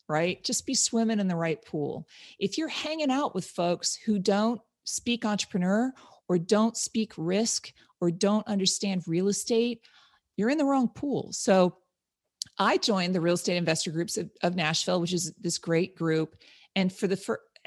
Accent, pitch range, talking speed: American, 175-225 Hz, 175 wpm